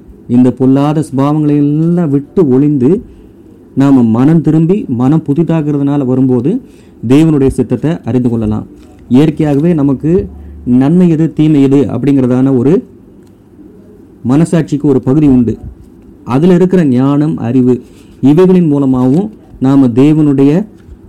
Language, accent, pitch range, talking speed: Tamil, native, 120-145 Hz, 100 wpm